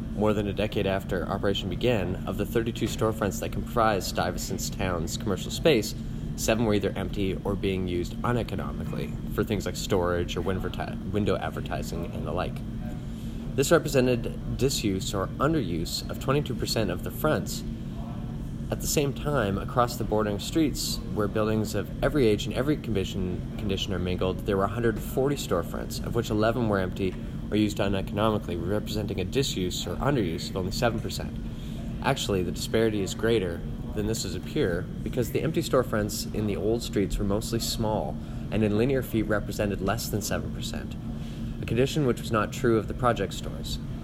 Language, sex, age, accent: English, male, 20-39, American